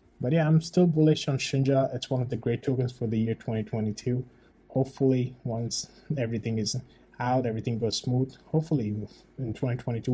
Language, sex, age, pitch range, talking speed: English, male, 20-39, 115-140 Hz, 165 wpm